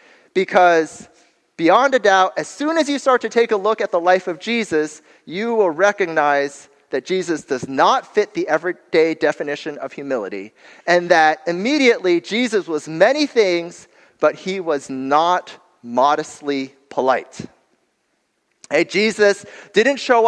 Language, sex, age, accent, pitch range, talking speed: English, male, 30-49, American, 180-245 Hz, 140 wpm